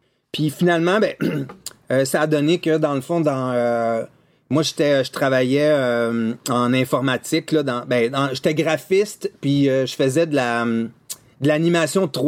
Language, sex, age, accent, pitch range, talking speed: French, male, 30-49, Canadian, 135-170 Hz, 165 wpm